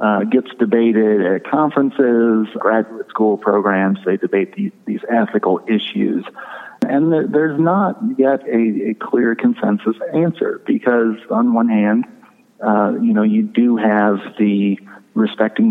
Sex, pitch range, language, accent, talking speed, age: male, 105-160 Hz, English, American, 135 wpm, 40-59